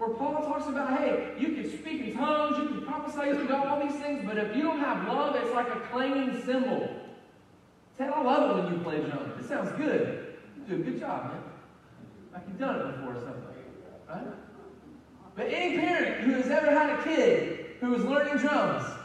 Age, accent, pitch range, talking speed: 30-49, American, 235-295 Hz, 210 wpm